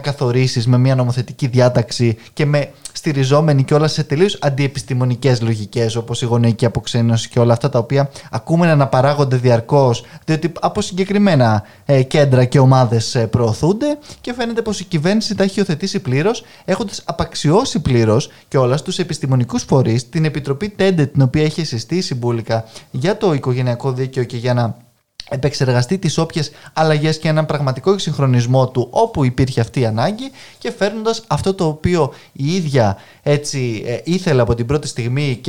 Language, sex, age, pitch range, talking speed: Greek, male, 20-39, 125-170 Hz, 160 wpm